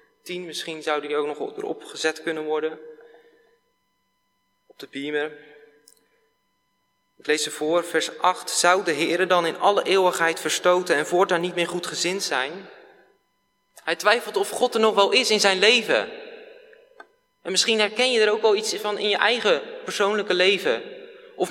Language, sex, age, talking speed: Dutch, male, 20-39, 160 wpm